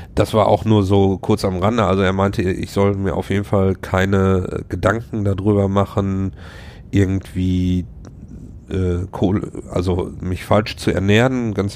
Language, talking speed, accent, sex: German, 155 wpm, German, male